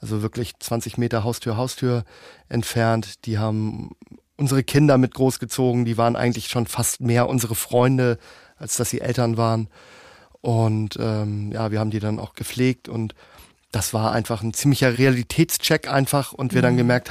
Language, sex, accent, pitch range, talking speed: German, male, German, 115-130 Hz, 165 wpm